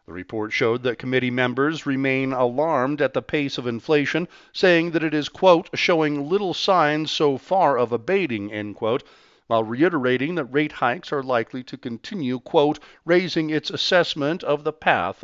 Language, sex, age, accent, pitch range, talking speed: English, male, 50-69, American, 115-145 Hz, 170 wpm